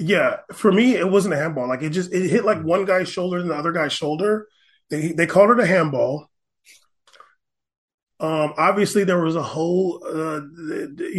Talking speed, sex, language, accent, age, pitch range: 180 wpm, male, English, American, 20-39, 150-200 Hz